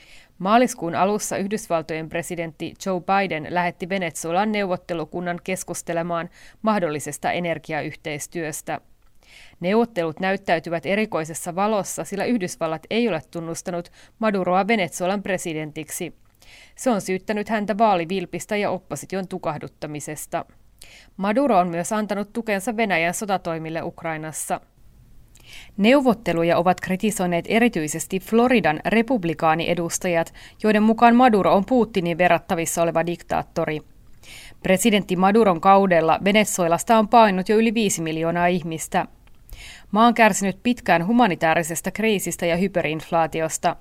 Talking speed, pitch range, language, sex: 100 wpm, 165-210 Hz, Finnish, female